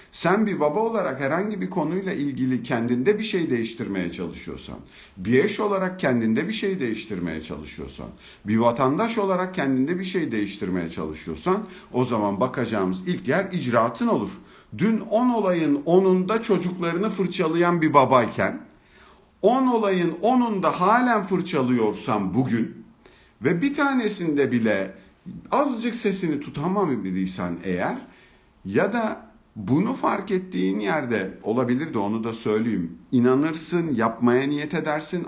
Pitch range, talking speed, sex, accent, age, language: 120-195 Hz, 125 wpm, male, native, 50-69, Turkish